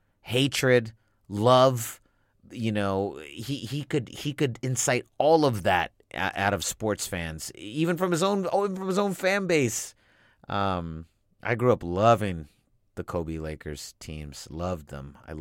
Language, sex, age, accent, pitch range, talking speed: English, male, 30-49, American, 80-105 Hz, 135 wpm